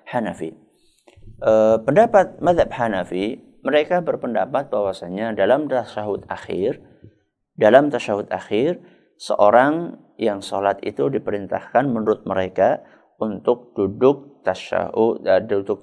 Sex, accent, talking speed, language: male, native, 90 wpm, Indonesian